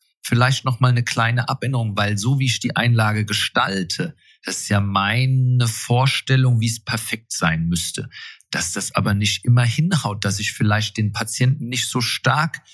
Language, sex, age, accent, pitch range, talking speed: German, male, 40-59, German, 110-135 Hz, 175 wpm